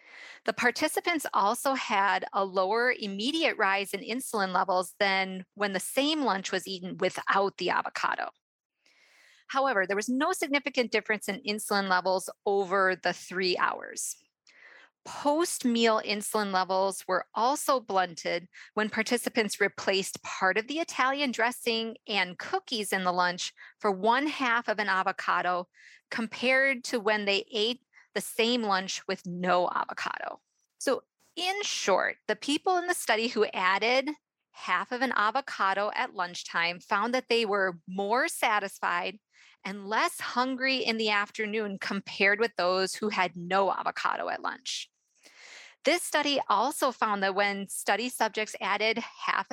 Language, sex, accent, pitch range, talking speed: English, female, American, 195-250 Hz, 140 wpm